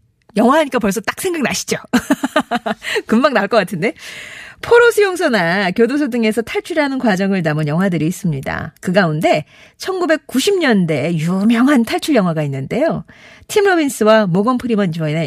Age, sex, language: 40-59, female, Korean